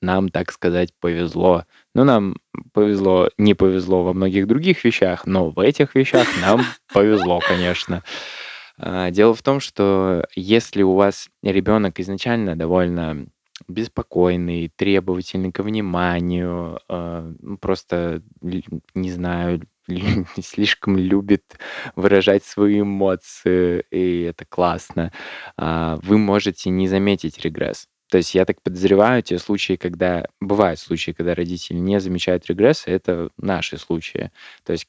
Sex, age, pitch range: male, 20-39, 90-100 Hz